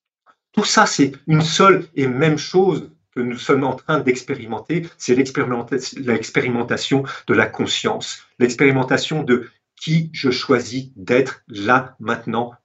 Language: French